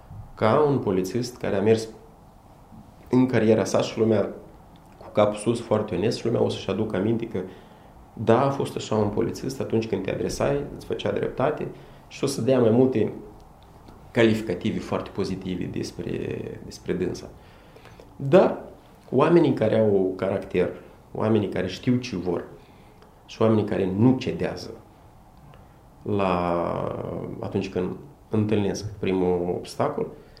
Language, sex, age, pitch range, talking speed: Romanian, male, 30-49, 90-110 Hz, 135 wpm